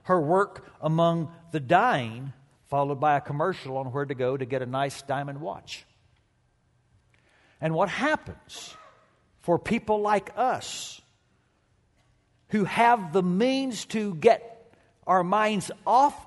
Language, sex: English, male